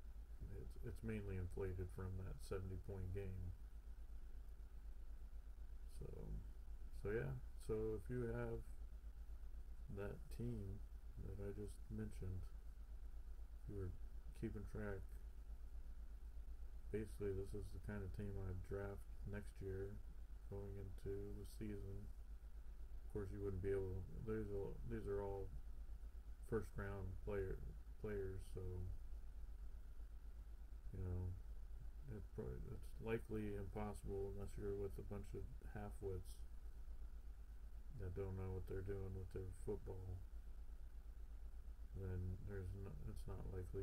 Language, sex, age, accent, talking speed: English, male, 40-59, American, 110 wpm